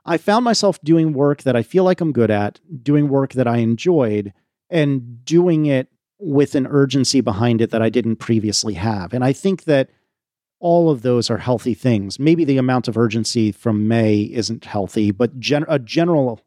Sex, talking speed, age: male, 190 wpm, 40-59